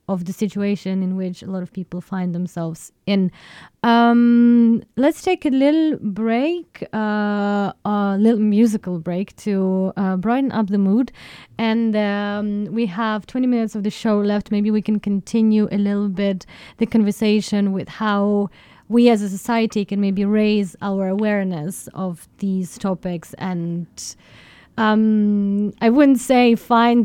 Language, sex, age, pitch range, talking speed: English, female, 20-39, 190-220 Hz, 150 wpm